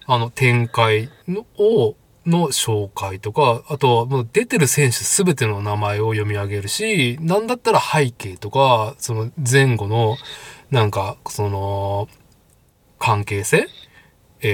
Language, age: Japanese, 20-39